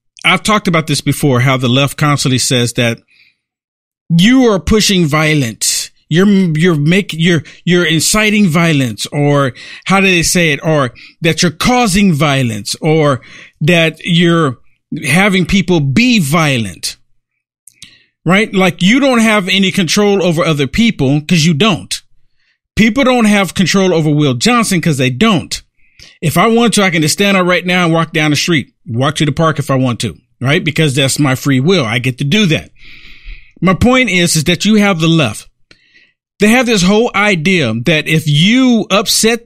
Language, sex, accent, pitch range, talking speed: English, male, American, 140-200 Hz, 175 wpm